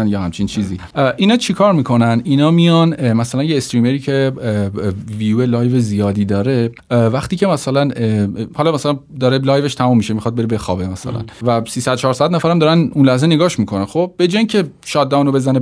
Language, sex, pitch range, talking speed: Persian, male, 120-170 Hz, 175 wpm